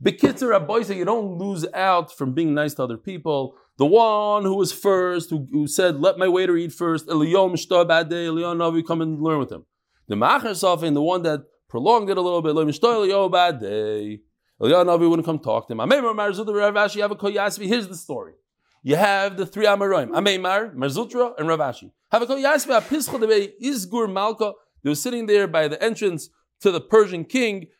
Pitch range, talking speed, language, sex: 165-230 Hz, 145 wpm, English, male